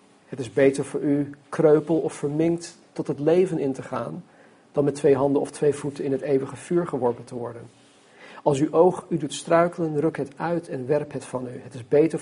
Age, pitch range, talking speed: 50-69, 135-165 Hz, 220 wpm